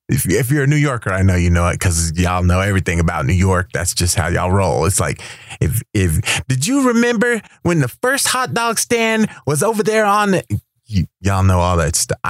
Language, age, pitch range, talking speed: English, 30-49, 95-155 Hz, 225 wpm